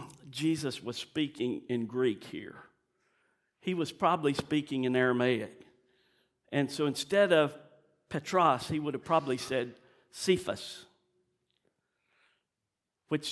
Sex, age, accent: male, 50-69, American